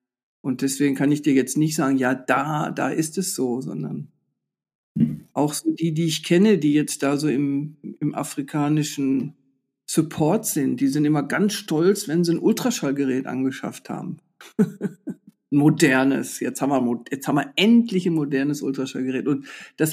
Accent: German